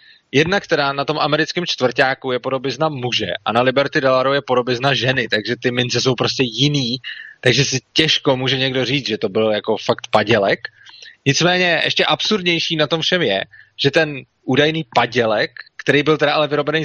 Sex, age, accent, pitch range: male, 20-39, native, 125-155 Hz